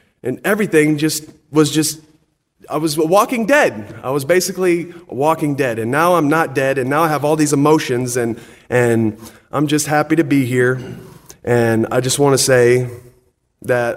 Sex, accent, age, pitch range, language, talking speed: male, American, 30-49, 115-140 Hz, English, 175 wpm